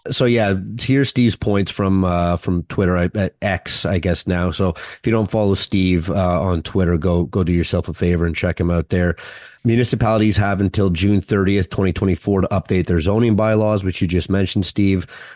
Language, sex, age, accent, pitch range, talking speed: English, male, 30-49, American, 90-105 Hz, 205 wpm